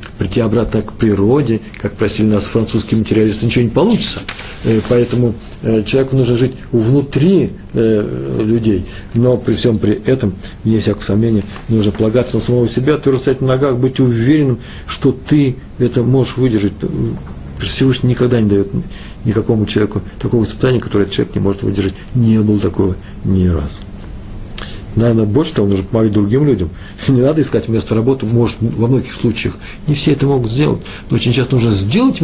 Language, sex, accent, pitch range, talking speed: Russian, male, native, 100-125 Hz, 160 wpm